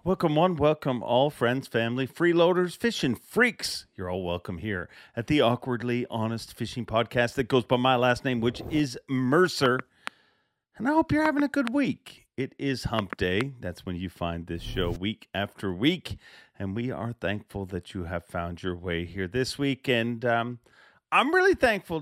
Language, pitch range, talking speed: English, 105-145 Hz, 185 wpm